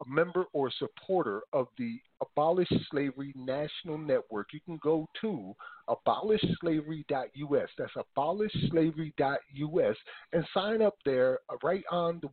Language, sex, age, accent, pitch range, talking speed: English, male, 40-59, American, 130-185 Hz, 120 wpm